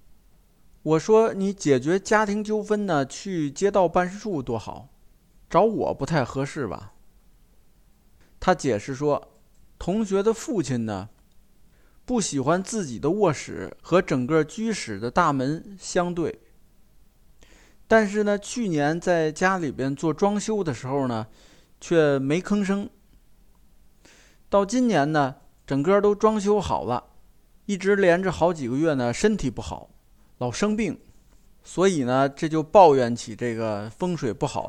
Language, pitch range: Chinese, 130-195 Hz